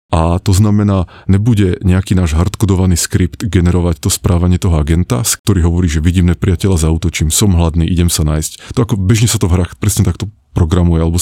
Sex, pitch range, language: male, 85-100 Hz, Slovak